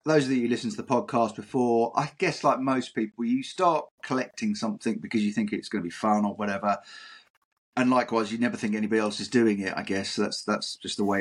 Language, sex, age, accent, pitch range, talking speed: English, male, 30-49, British, 105-145 Hz, 240 wpm